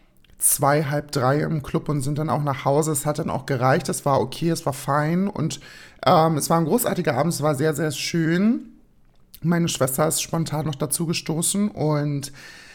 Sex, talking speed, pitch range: male, 200 wpm, 145-175 Hz